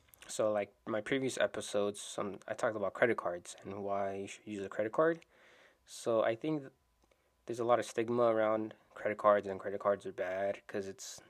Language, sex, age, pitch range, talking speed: English, male, 20-39, 105-125 Hz, 205 wpm